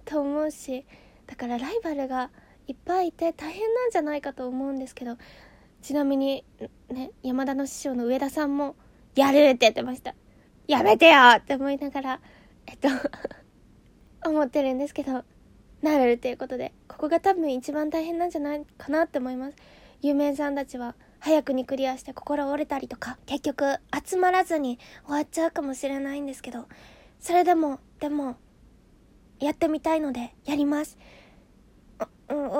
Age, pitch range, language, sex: 20-39, 280-345 Hz, Japanese, female